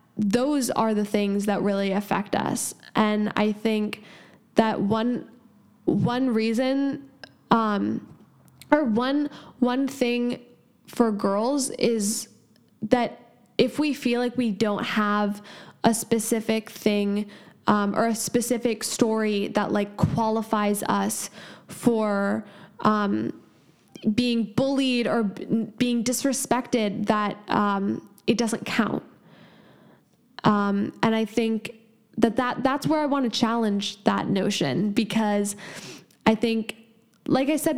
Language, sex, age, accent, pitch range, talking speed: English, female, 10-29, American, 205-240 Hz, 120 wpm